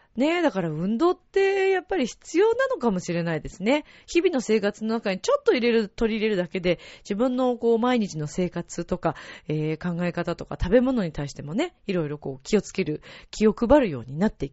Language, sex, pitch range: Japanese, female, 160-250 Hz